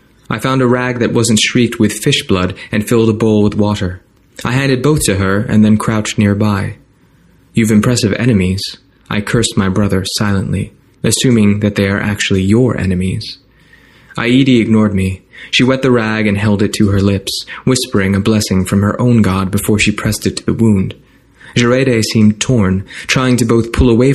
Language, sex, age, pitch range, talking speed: English, male, 20-39, 100-115 Hz, 185 wpm